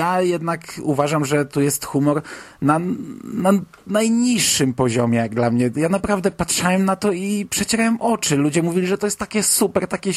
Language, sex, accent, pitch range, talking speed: Polish, male, native, 125-165 Hz, 175 wpm